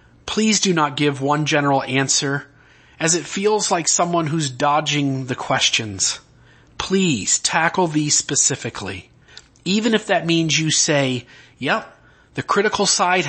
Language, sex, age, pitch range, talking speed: English, male, 30-49, 130-170 Hz, 135 wpm